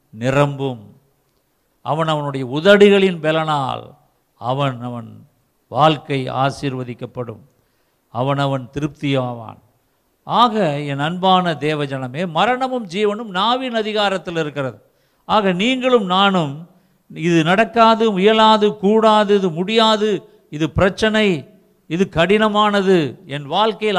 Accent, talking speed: native, 90 wpm